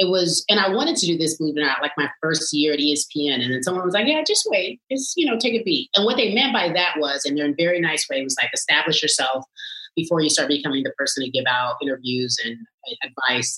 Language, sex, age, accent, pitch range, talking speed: English, female, 30-49, American, 130-165 Hz, 270 wpm